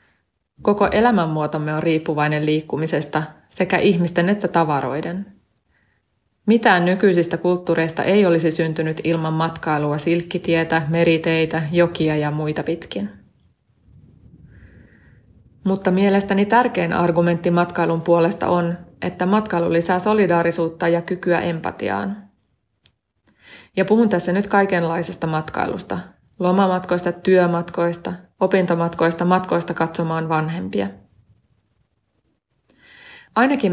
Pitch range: 160-185 Hz